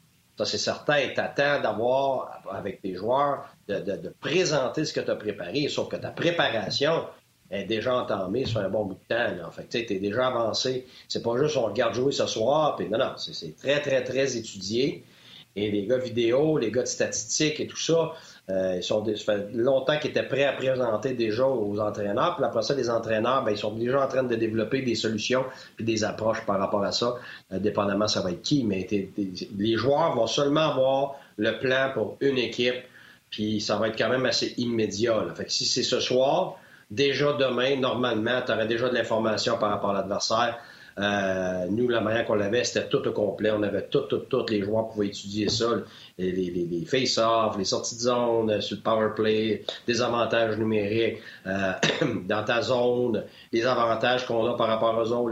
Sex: male